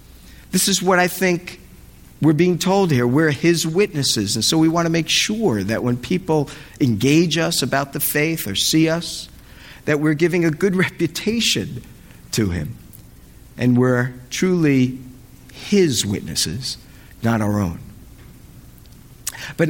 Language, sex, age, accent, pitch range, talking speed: English, male, 50-69, American, 120-165 Hz, 145 wpm